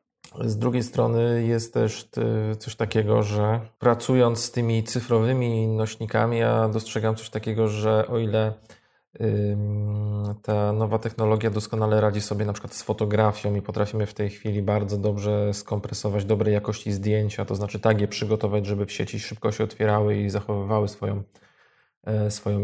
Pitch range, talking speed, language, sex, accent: 105-110 Hz, 150 wpm, Polish, male, native